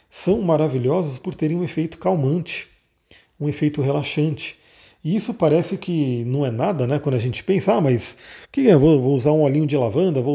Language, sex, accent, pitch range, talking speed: Portuguese, male, Brazilian, 130-165 Hz, 195 wpm